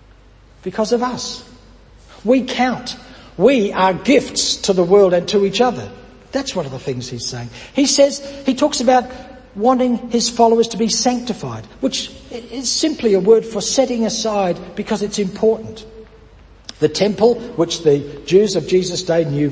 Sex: male